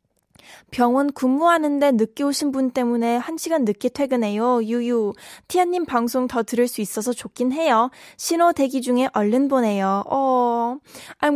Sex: female